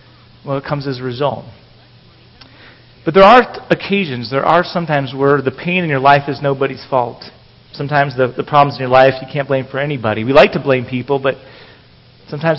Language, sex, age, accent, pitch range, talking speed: English, male, 40-59, American, 130-155 Hz, 195 wpm